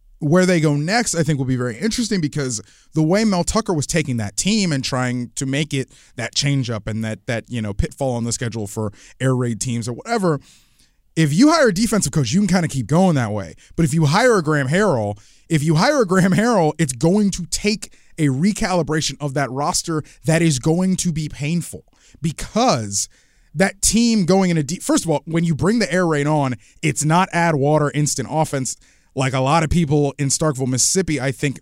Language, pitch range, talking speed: English, 130-180 Hz, 225 wpm